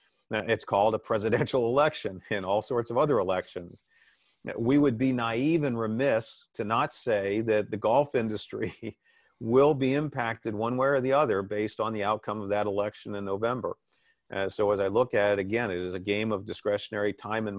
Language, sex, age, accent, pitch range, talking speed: English, male, 50-69, American, 105-120 Hz, 195 wpm